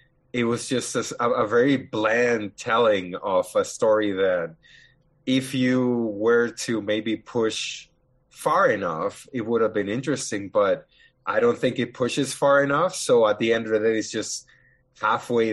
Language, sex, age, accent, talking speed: English, male, 20-39, American, 165 wpm